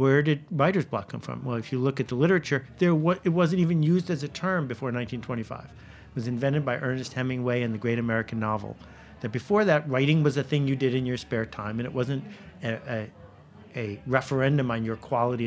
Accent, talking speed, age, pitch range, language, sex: American, 225 wpm, 50-69, 120-165 Hz, English, male